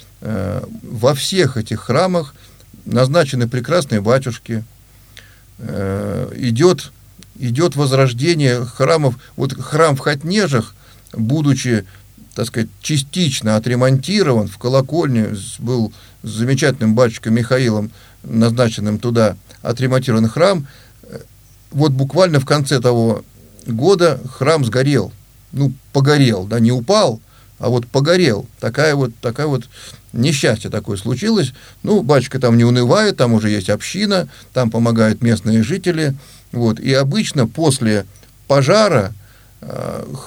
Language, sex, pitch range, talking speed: Russian, male, 110-135 Hz, 105 wpm